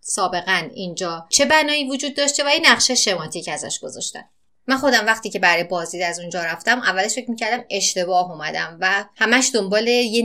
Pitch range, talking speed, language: 180-235 Hz, 175 wpm, English